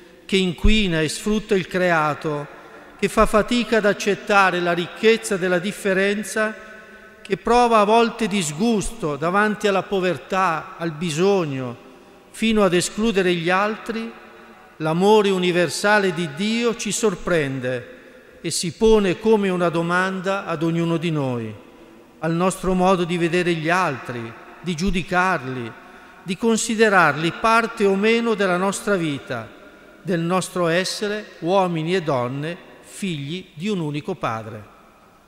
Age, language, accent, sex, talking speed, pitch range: 50-69, Italian, native, male, 125 wpm, 165-210 Hz